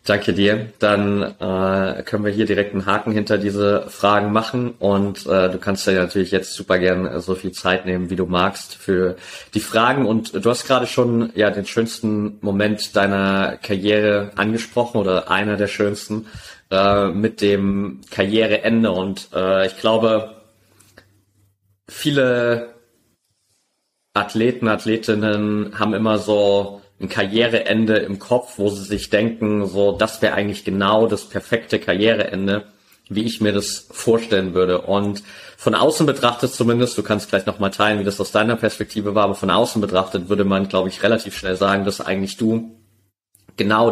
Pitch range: 95-110 Hz